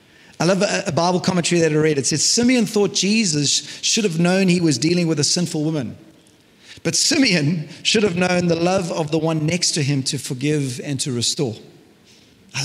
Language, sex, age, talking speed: English, male, 40-59, 200 wpm